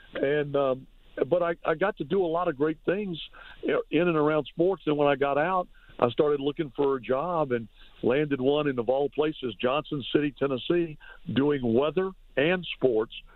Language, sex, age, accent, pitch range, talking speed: English, male, 60-79, American, 135-165 Hz, 190 wpm